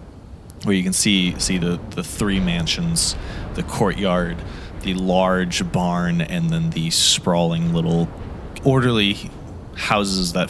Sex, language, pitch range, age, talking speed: male, English, 90-115 Hz, 20-39, 125 wpm